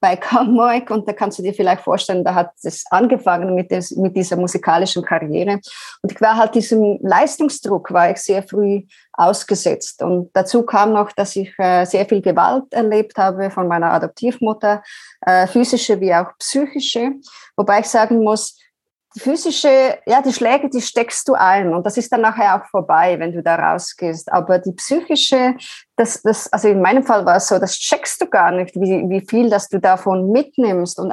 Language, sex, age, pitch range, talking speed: German, female, 20-39, 190-240 Hz, 185 wpm